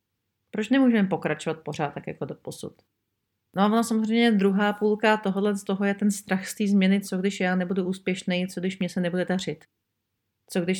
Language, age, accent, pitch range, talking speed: Czech, 40-59, native, 155-195 Hz, 200 wpm